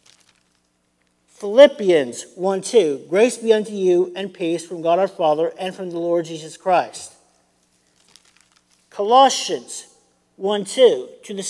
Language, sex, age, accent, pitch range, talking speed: English, male, 50-69, American, 140-205 Hz, 125 wpm